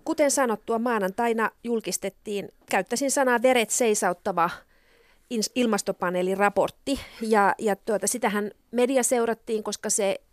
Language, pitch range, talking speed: Finnish, 180-215 Hz, 105 wpm